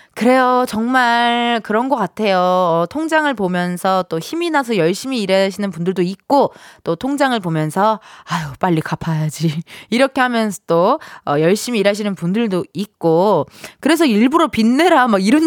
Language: Korean